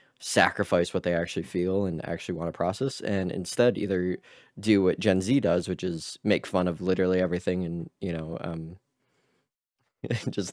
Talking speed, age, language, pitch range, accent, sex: 170 wpm, 20-39, English, 85-95 Hz, American, male